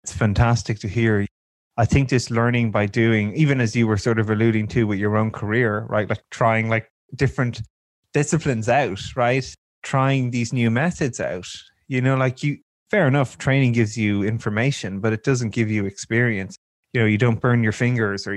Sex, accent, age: male, Irish, 20-39